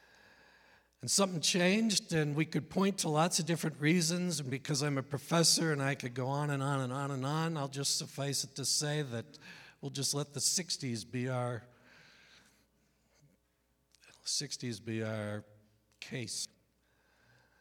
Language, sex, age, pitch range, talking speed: English, male, 60-79, 125-150 Hz, 155 wpm